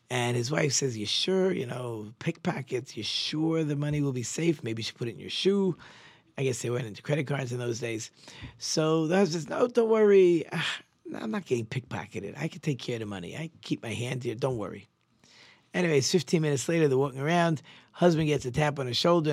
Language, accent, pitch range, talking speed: English, American, 120-160 Hz, 235 wpm